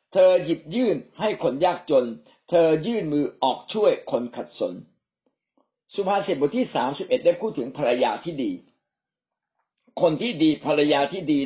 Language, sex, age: Thai, male, 60-79